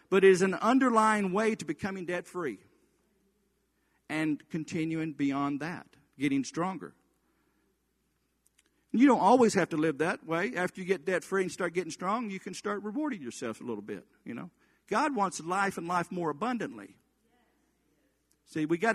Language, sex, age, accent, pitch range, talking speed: English, male, 50-69, American, 170-215 Hz, 160 wpm